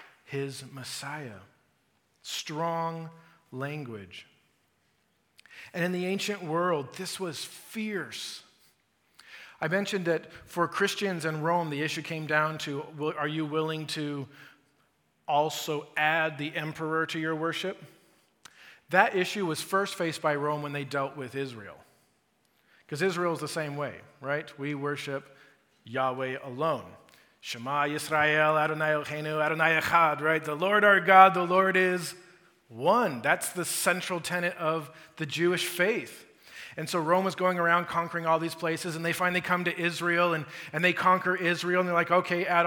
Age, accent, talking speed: 40-59, American, 150 wpm